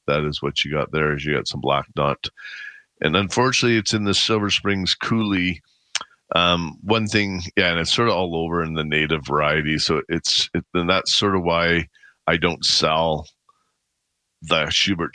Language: English